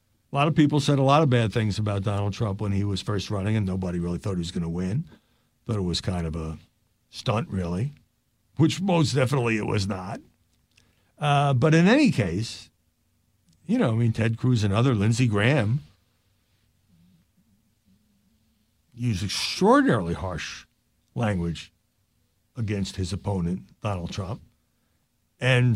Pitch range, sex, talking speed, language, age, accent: 95-120 Hz, male, 155 wpm, English, 60-79, American